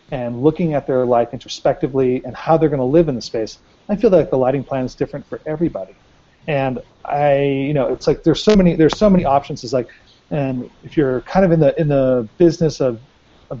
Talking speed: 225 wpm